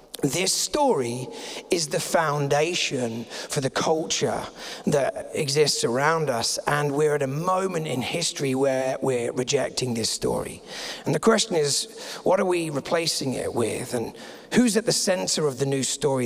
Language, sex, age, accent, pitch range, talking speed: English, male, 40-59, British, 140-195 Hz, 160 wpm